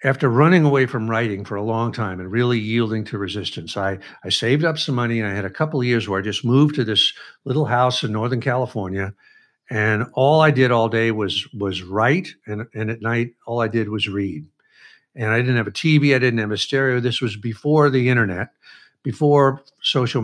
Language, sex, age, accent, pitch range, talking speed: English, male, 60-79, American, 110-140 Hz, 220 wpm